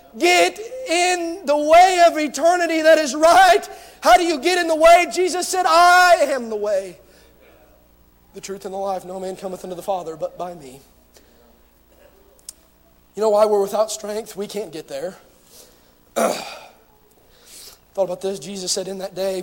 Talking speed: 165 wpm